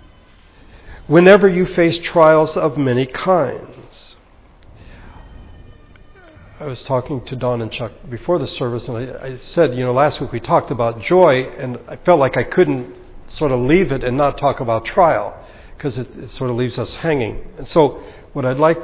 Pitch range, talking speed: 125-165 Hz, 175 wpm